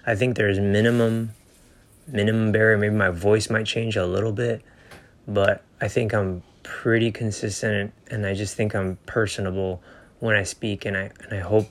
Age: 20-39